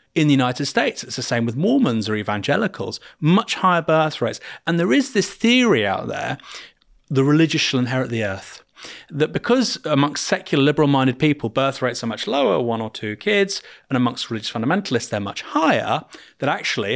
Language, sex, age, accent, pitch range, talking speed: English, male, 30-49, British, 120-175 Hz, 190 wpm